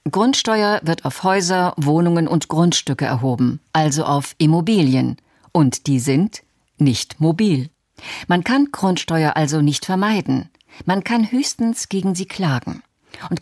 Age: 50-69